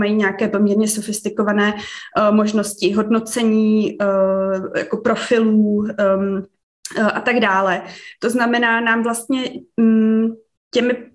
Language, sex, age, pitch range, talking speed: Slovak, female, 20-39, 210-235 Hz, 80 wpm